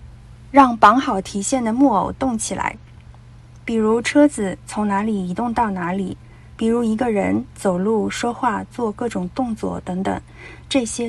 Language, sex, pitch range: Chinese, female, 190-245 Hz